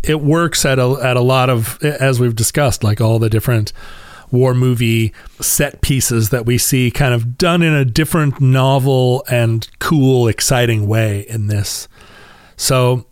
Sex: male